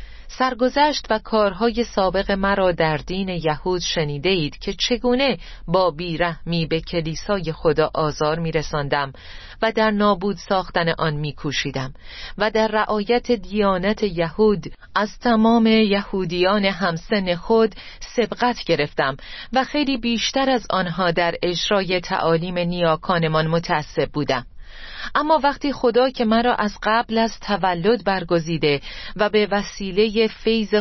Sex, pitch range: female, 175-220 Hz